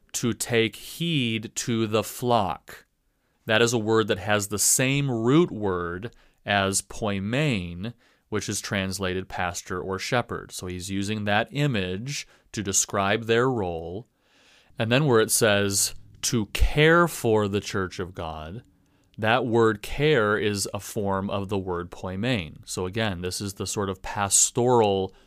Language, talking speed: English, 150 wpm